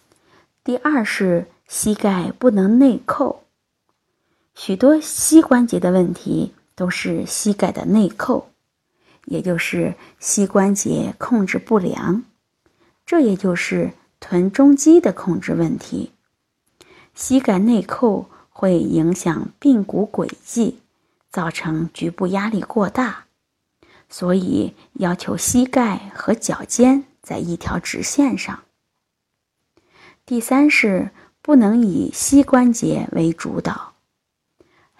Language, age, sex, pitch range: Chinese, 20-39, female, 185-265 Hz